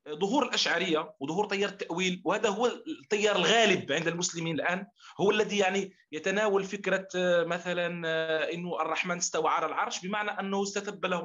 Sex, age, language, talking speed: male, 40-59, Arabic, 145 wpm